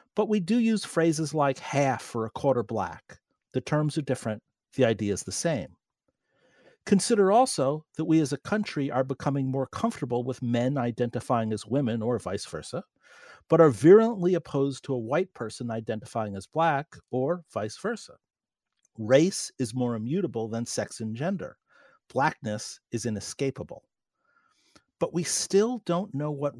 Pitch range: 130-185 Hz